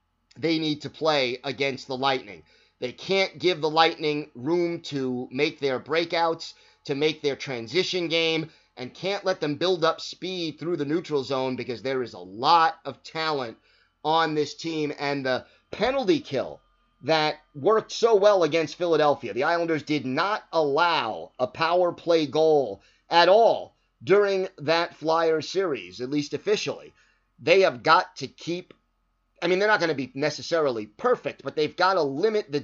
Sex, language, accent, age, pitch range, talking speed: male, English, American, 30-49, 140-170 Hz, 165 wpm